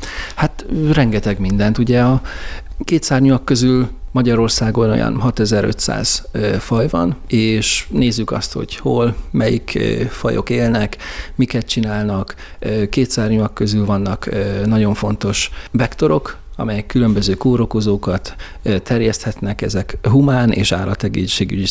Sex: male